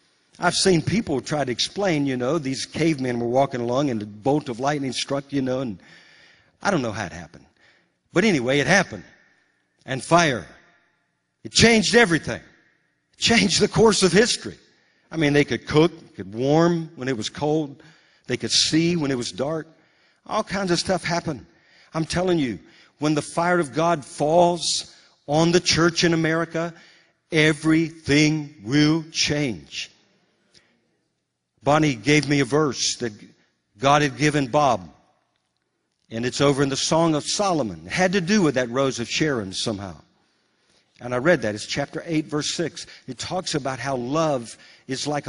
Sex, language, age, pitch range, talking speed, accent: male, English, 50-69, 130-165 Hz, 170 wpm, American